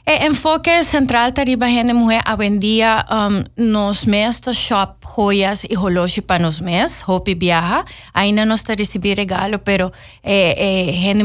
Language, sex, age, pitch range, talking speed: English, female, 30-49, 175-200 Hz, 160 wpm